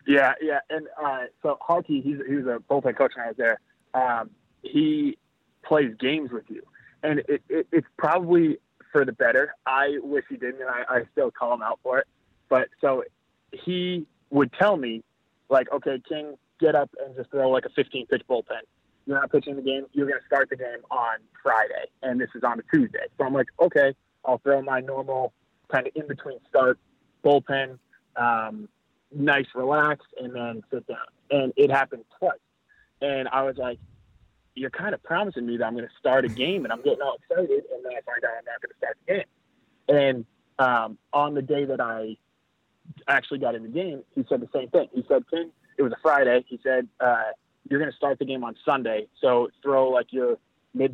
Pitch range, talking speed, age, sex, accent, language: 125-155 Hz, 205 wpm, 20-39, male, American, English